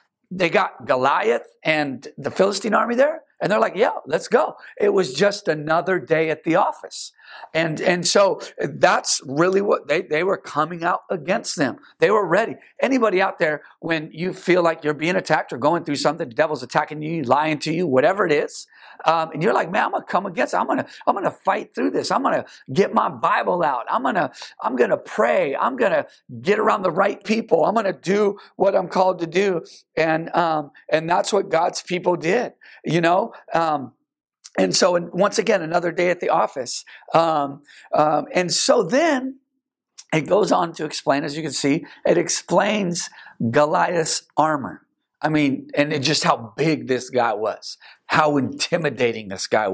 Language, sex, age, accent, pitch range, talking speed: English, male, 50-69, American, 150-190 Hz, 190 wpm